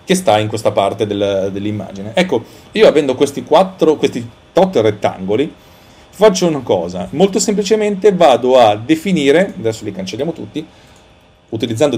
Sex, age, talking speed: male, 40-59, 140 wpm